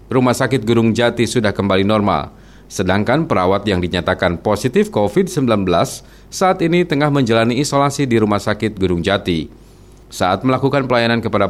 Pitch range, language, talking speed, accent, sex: 100-135 Hz, Indonesian, 140 wpm, native, male